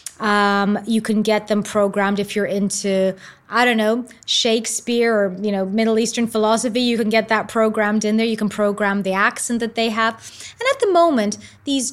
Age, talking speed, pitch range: 20-39, 195 wpm, 210-260 Hz